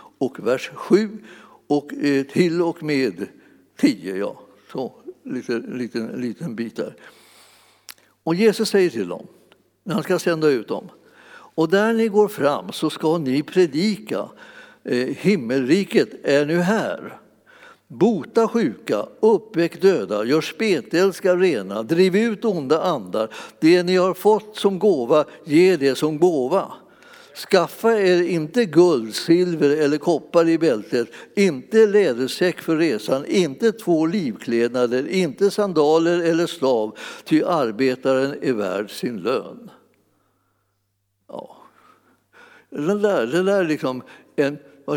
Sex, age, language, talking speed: male, 60-79, Swedish, 125 wpm